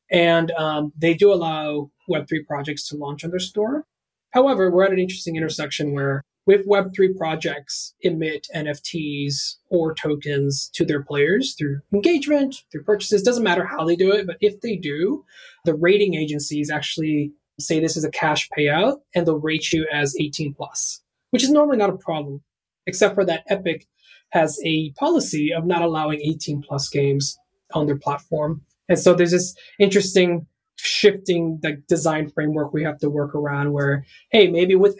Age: 20-39